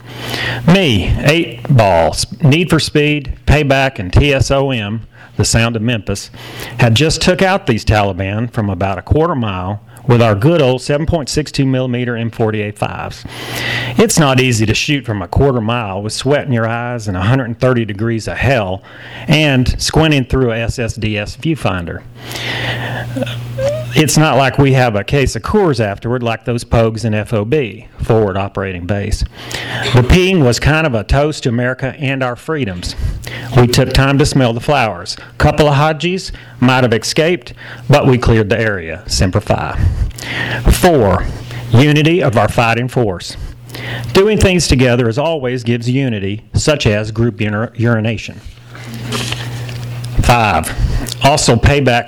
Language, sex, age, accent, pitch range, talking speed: English, male, 40-59, American, 110-135 Hz, 145 wpm